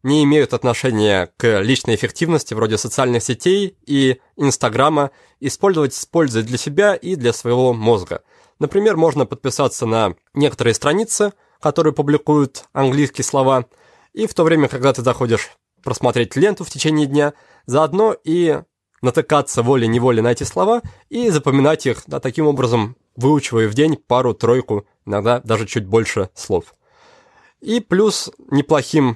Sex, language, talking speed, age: male, Russian, 135 wpm, 20-39